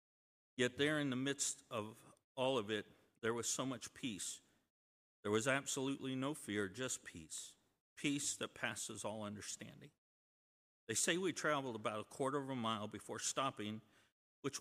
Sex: male